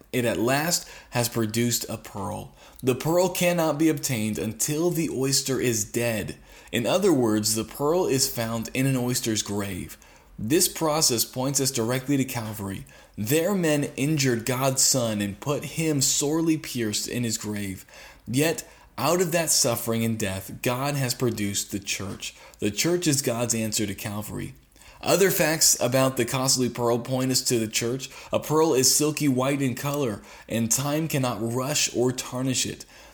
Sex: male